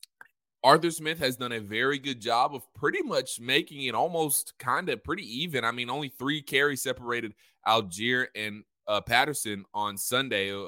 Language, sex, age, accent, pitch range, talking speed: English, male, 20-39, American, 120-155 Hz, 170 wpm